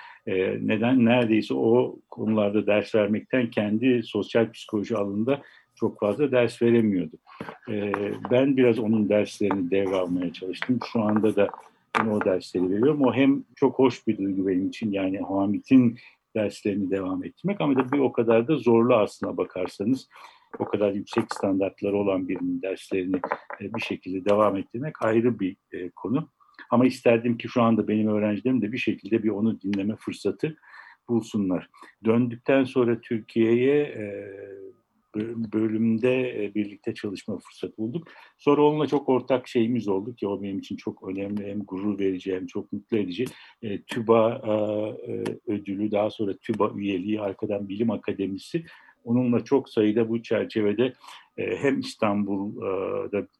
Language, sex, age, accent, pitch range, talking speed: Turkish, male, 60-79, native, 100-125 Hz, 135 wpm